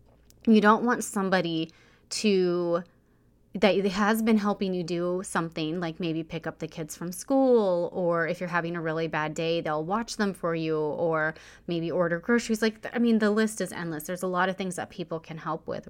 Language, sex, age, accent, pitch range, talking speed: English, female, 30-49, American, 165-205 Hz, 205 wpm